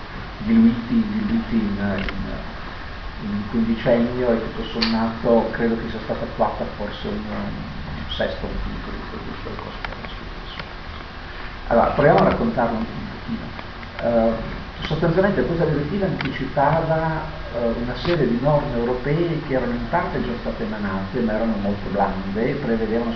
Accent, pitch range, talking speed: native, 110-130 Hz, 135 wpm